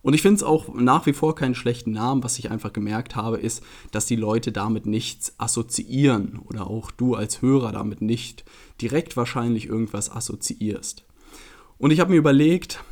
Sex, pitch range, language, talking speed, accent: male, 110-130 Hz, German, 180 wpm, German